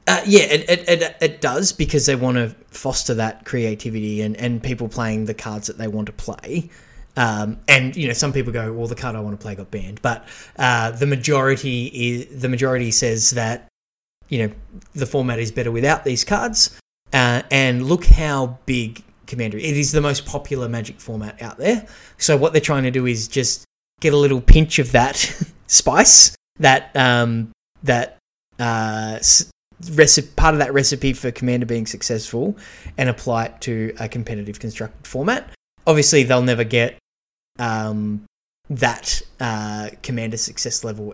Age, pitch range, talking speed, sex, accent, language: 20-39, 115-140 Hz, 175 wpm, male, Australian, English